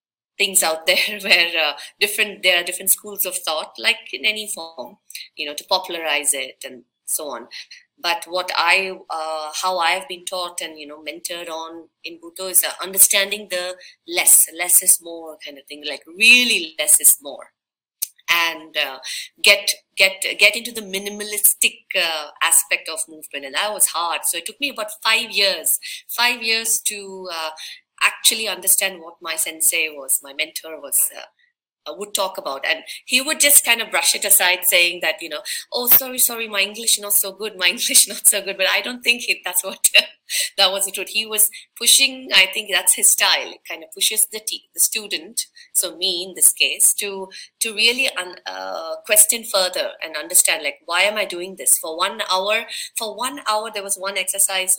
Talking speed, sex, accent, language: 195 wpm, female, Indian, English